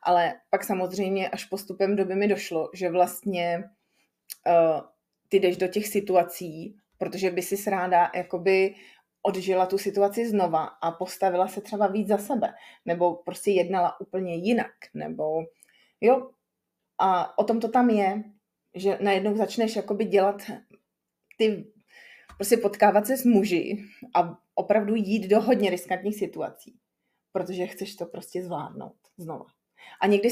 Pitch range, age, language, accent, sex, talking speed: 175-210 Hz, 30-49, Czech, native, female, 130 wpm